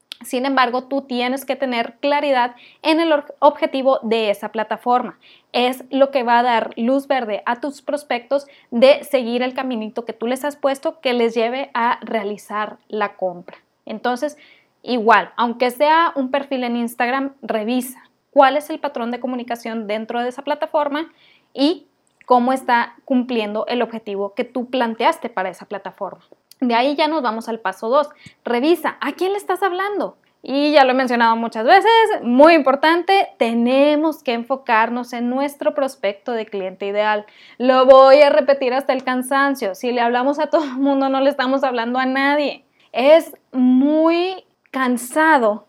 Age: 20-39